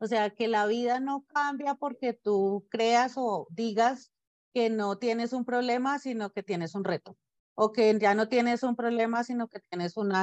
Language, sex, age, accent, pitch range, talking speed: Spanish, female, 30-49, Colombian, 195-245 Hz, 195 wpm